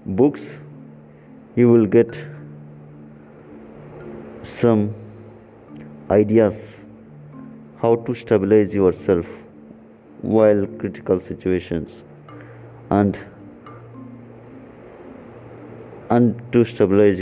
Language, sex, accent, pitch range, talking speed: Telugu, male, native, 75-115 Hz, 60 wpm